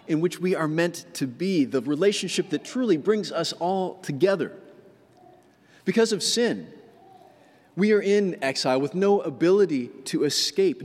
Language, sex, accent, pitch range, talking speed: English, male, American, 150-215 Hz, 150 wpm